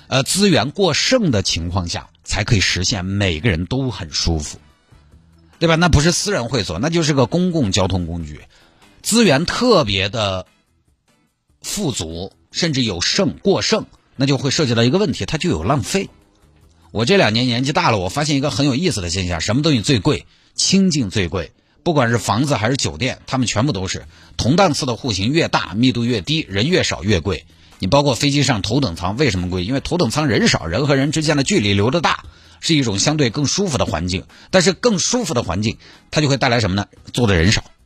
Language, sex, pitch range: Chinese, male, 90-145 Hz